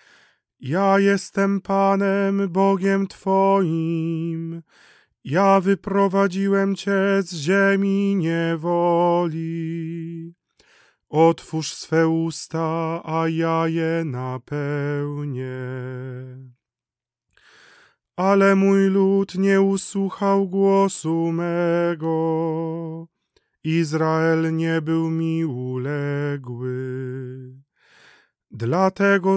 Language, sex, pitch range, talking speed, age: Polish, male, 160-195 Hz, 65 wpm, 30-49